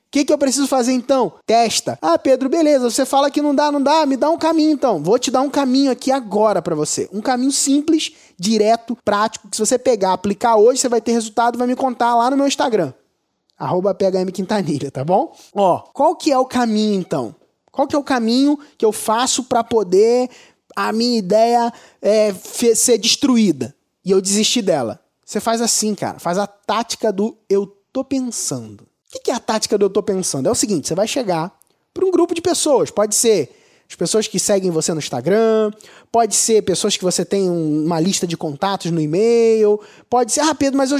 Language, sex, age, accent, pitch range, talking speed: Portuguese, male, 20-39, Brazilian, 205-280 Hz, 210 wpm